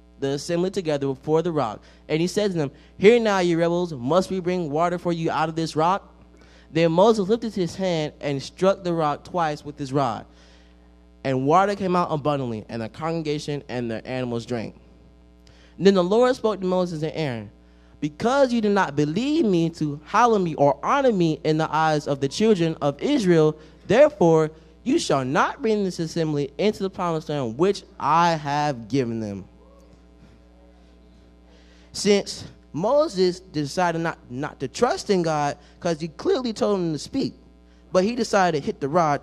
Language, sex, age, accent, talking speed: English, male, 20-39, American, 180 wpm